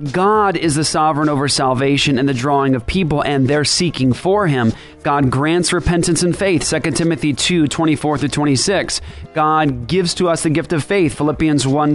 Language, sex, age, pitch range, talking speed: English, male, 30-49, 140-180 Hz, 175 wpm